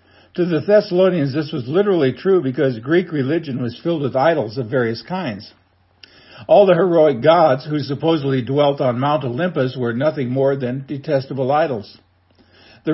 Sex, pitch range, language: male, 125-160 Hz, English